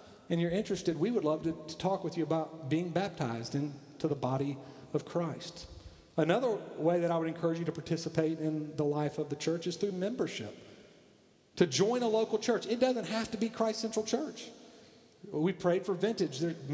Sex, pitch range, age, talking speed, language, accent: male, 140-190 Hz, 40-59, 200 wpm, English, American